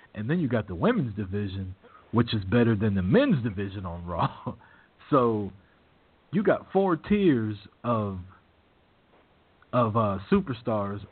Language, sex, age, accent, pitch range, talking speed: English, male, 40-59, American, 95-125 Hz, 135 wpm